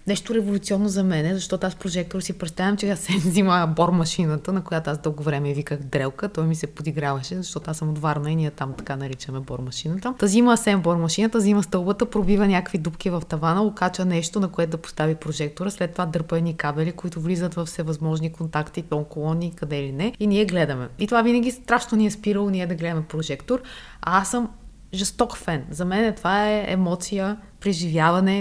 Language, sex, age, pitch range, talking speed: Bulgarian, female, 20-39, 155-205 Hz, 195 wpm